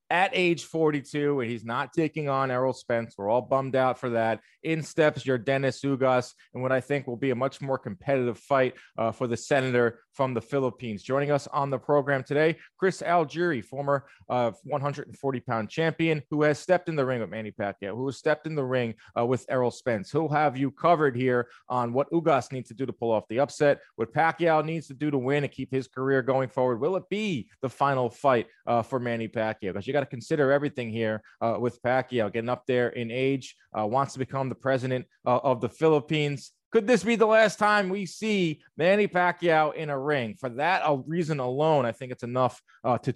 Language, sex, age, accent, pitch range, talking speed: English, male, 30-49, American, 125-155 Hz, 220 wpm